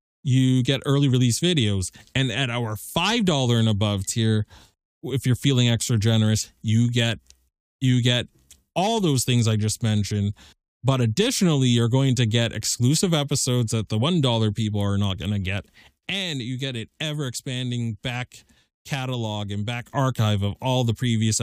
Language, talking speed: English, 165 wpm